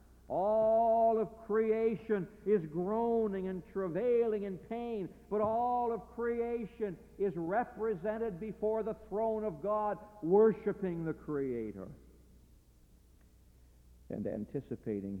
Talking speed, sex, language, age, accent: 100 wpm, male, English, 60-79, American